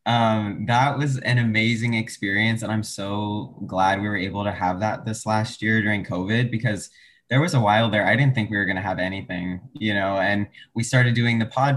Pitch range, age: 105-125 Hz, 20-39